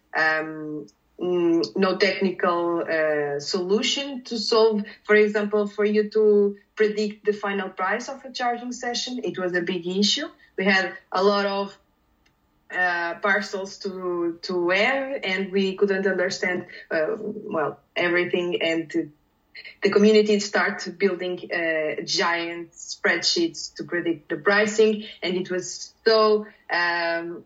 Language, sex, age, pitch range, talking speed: French, female, 20-39, 170-225 Hz, 130 wpm